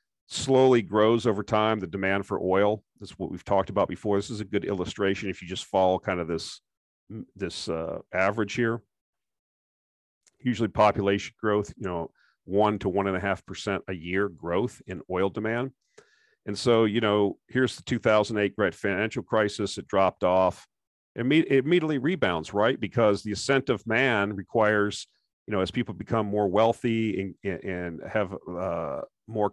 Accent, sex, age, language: American, male, 40-59, English